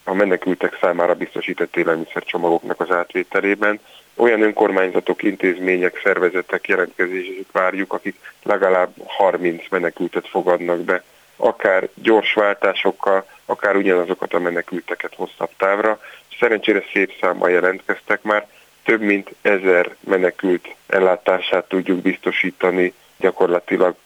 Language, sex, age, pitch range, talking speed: Hungarian, male, 30-49, 90-100 Hz, 100 wpm